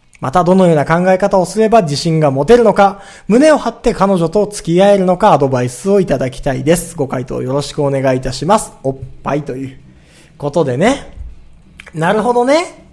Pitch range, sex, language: 150-235 Hz, male, Japanese